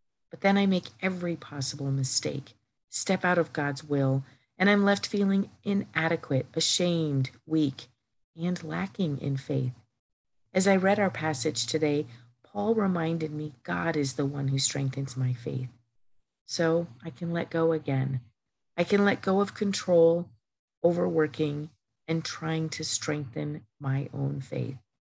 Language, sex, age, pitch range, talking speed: English, female, 50-69, 135-180 Hz, 145 wpm